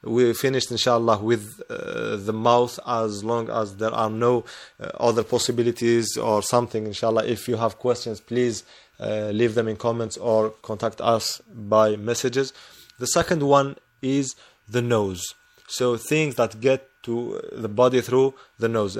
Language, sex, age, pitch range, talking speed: English, male, 20-39, 115-130 Hz, 160 wpm